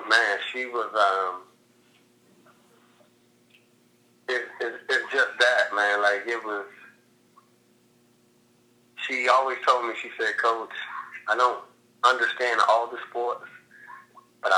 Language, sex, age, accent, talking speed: English, male, 30-49, American, 110 wpm